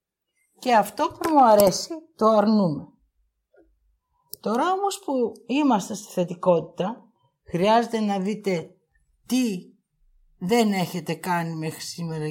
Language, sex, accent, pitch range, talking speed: Greek, female, native, 175-230 Hz, 105 wpm